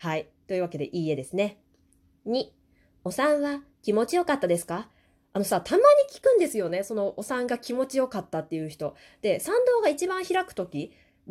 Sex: female